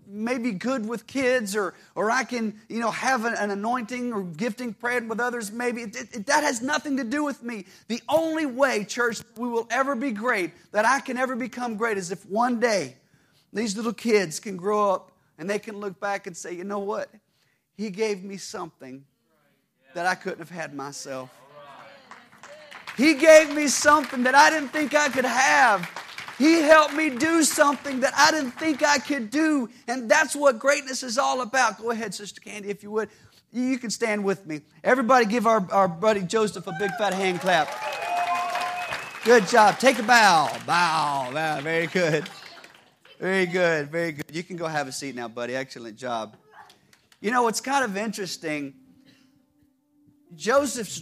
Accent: American